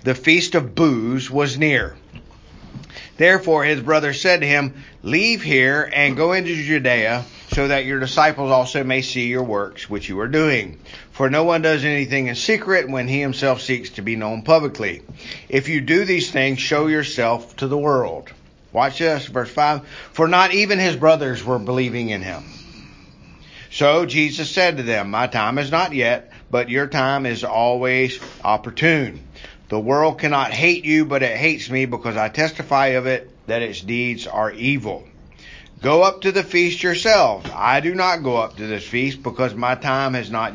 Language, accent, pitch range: English, American, 120-155 Hz